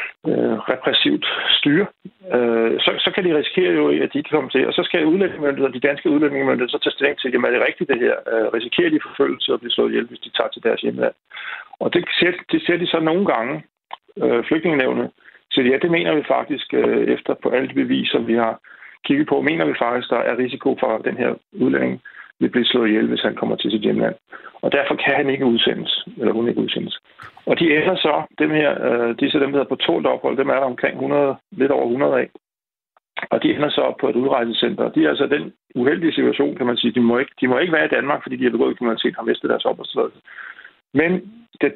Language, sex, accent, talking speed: Danish, male, native, 245 wpm